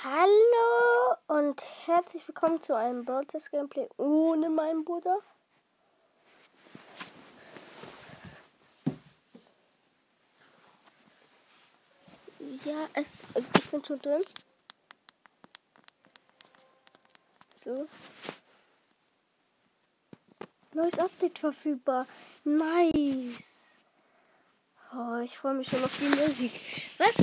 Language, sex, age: German, female, 20-39